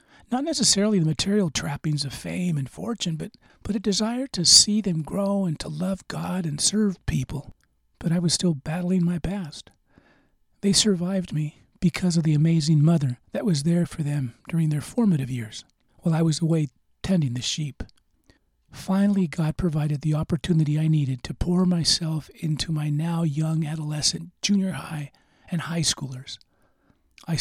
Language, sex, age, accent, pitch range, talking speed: English, male, 40-59, American, 145-185 Hz, 165 wpm